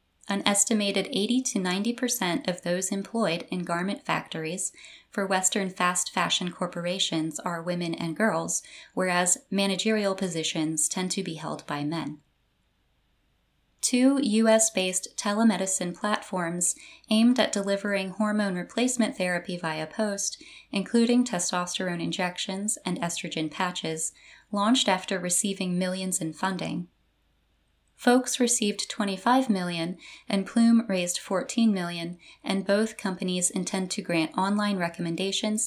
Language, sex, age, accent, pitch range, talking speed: English, female, 20-39, American, 170-215 Hz, 120 wpm